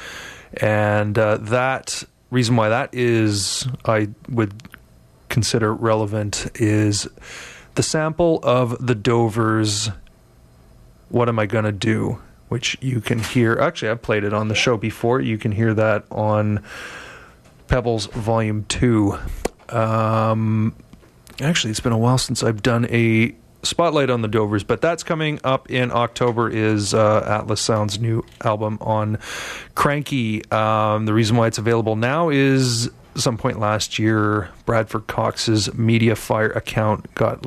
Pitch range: 110-125 Hz